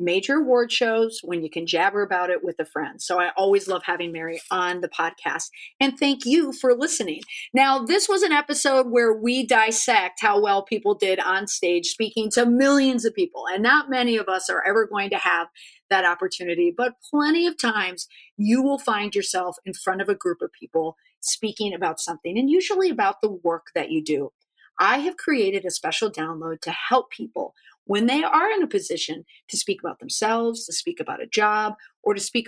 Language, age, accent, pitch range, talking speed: English, 40-59, American, 185-275 Hz, 205 wpm